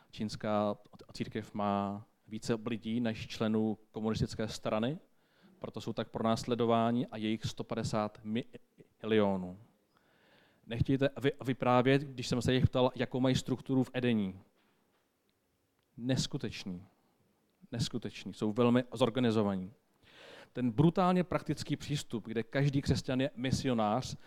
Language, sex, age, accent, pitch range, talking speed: Czech, male, 40-59, native, 110-135 Hz, 105 wpm